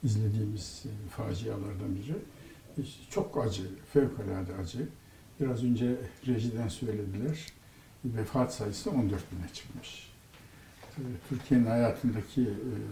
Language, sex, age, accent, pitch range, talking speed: Turkish, male, 60-79, native, 105-135 Hz, 80 wpm